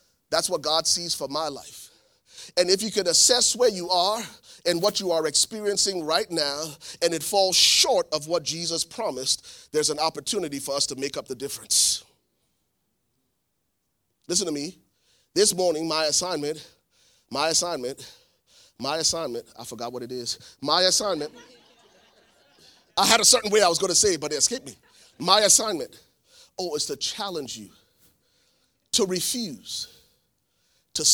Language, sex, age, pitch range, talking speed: English, male, 30-49, 155-250 Hz, 160 wpm